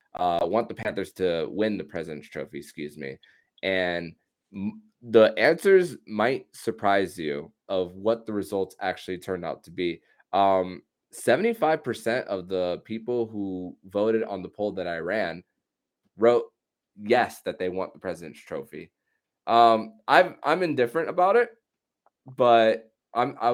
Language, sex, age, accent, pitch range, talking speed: English, male, 20-39, American, 90-115 Hz, 145 wpm